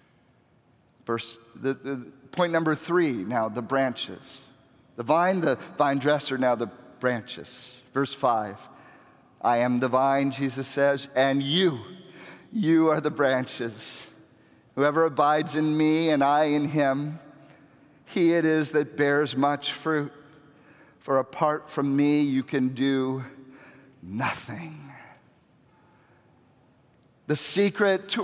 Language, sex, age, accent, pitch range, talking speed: English, male, 50-69, American, 140-190 Hz, 120 wpm